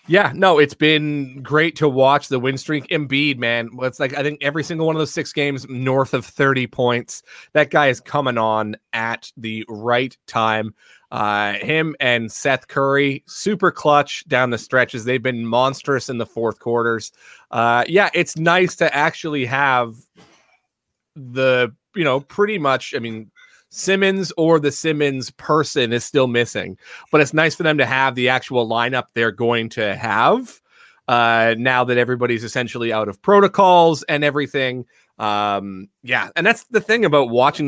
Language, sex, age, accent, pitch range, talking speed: English, male, 30-49, American, 120-155 Hz, 170 wpm